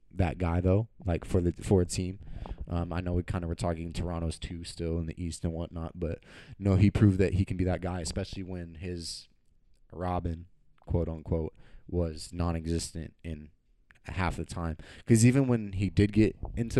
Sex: male